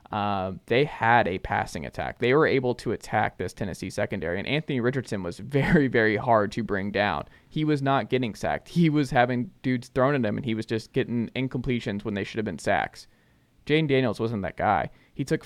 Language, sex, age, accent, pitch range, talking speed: English, male, 20-39, American, 105-125 Hz, 215 wpm